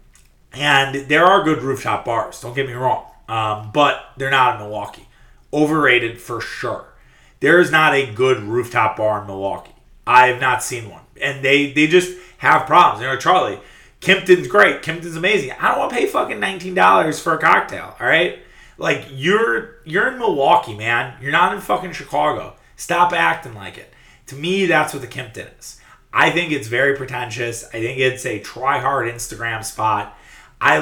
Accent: American